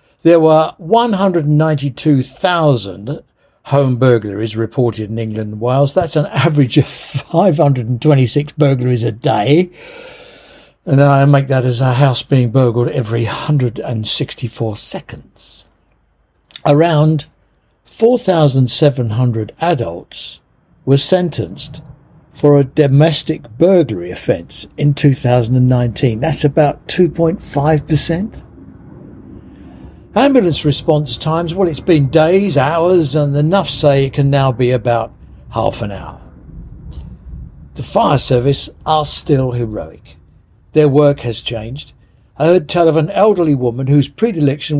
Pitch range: 125-160 Hz